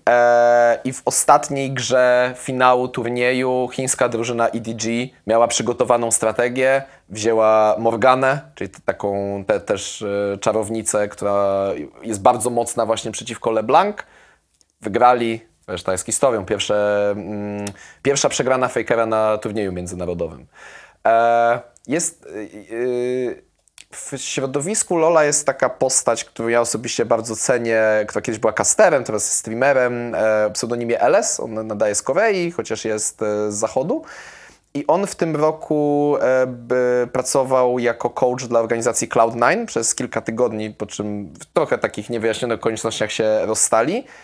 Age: 20-39